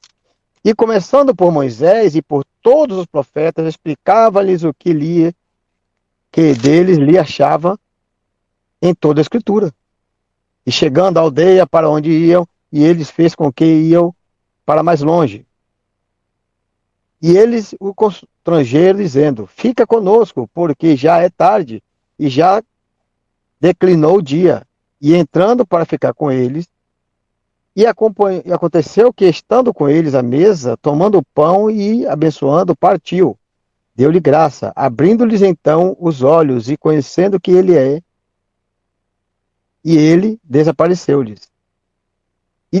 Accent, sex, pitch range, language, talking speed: Brazilian, male, 110-180 Hz, Portuguese, 125 wpm